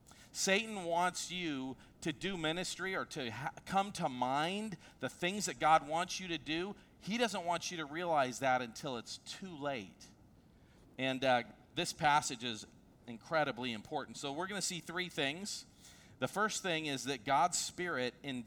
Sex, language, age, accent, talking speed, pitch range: male, English, 40-59, American, 165 wpm, 130-180 Hz